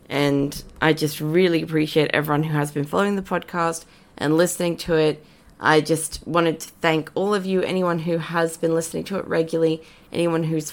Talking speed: 190 wpm